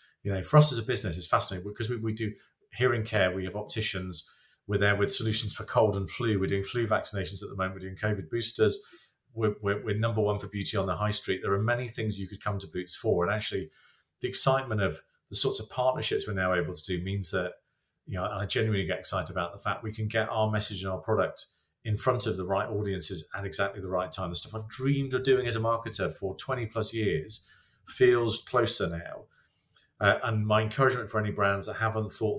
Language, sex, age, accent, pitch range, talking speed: English, male, 40-59, British, 90-110 Hz, 235 wpm